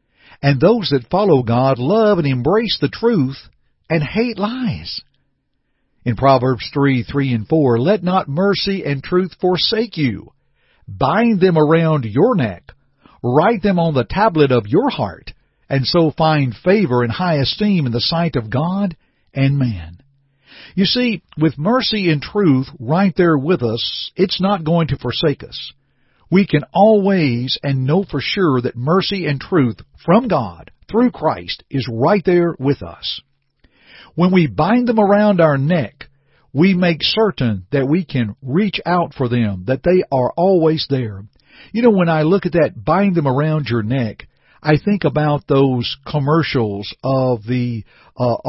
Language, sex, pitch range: English, male, 130-185 Hz